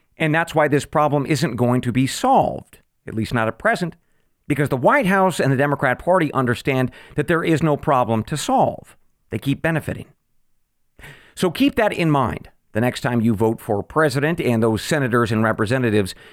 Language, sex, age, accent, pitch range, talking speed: English, male, 50-69, American, 120-170 Hz, 185 wpm